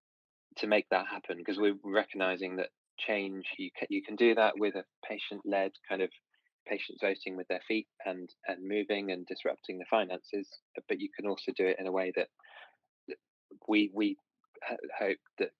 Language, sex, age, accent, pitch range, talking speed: English, male, 20-39, British, 90-105 Hz, 175 wpm